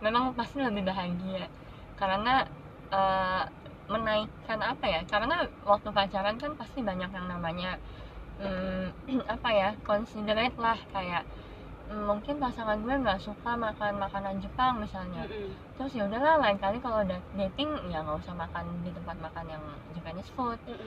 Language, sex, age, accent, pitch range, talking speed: Indonesian, female, 20-39, native, 190-245 Hz, 145 wpm